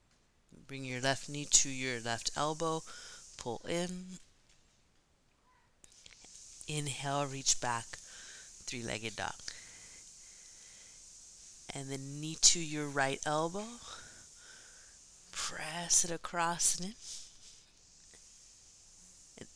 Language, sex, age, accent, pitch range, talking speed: English, female, 30-49, American, 140-195 Hz, 85 wpm